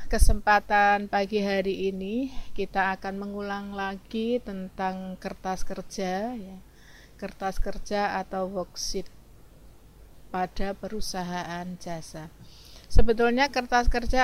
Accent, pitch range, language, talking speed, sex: native, 190-220 Hz, Indonesian, 95 wpm, female